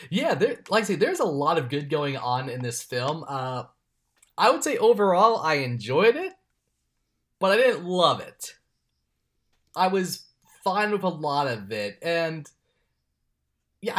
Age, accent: 20-39, American